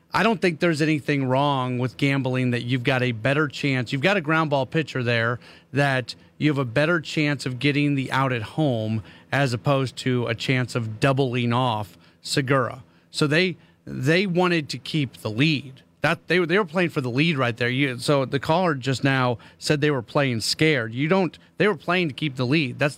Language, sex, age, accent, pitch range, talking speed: English, male, 40-59, American, 125-155 Hz, 210 wpm